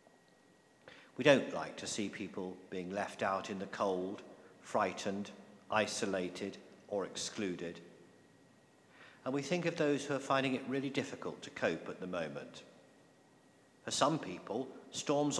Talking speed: 140 wpm